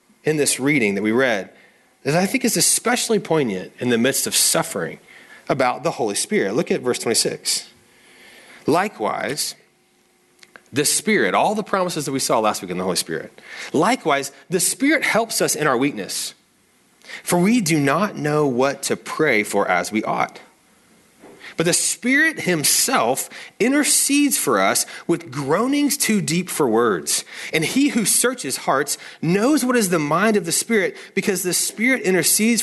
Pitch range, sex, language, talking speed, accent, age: 150-225 Hz, male, English, 165 wpm, American, 30-49